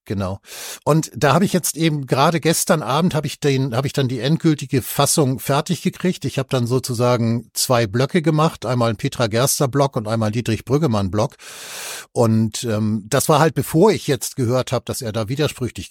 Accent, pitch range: German, 105-135 Hz